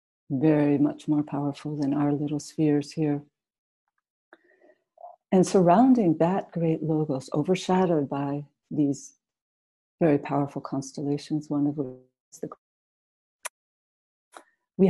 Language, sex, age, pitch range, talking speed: English, female, 60-79, 145-175 Hz, 105 wpm